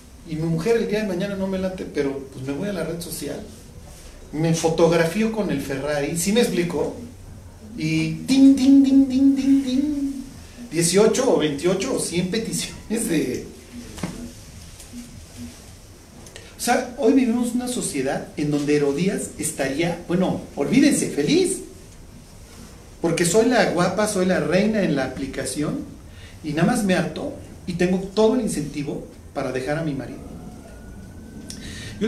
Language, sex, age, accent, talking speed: Spanish, male, 40-59, Mexican, 150 wpm